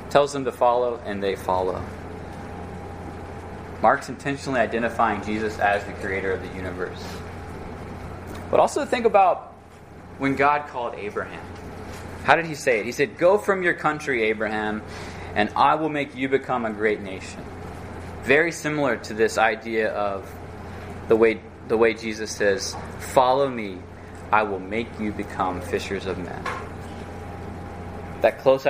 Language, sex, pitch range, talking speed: English, male, 90-135 Hz, 145 wpm